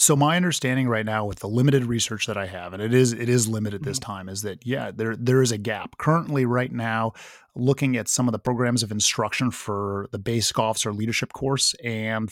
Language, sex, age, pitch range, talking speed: English, male, 30-49, 110-135 Hz, 225 wpm